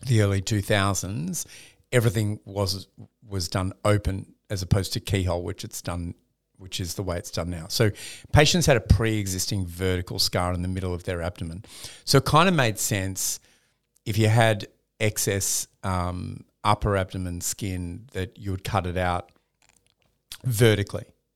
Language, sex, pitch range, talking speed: English, male, 95-115 Hz, 155 wpm